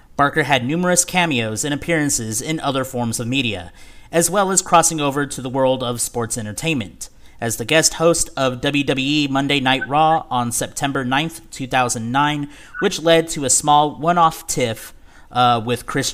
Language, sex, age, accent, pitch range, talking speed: English, male, 30-49, American, 120-155 Hz, 165 wpm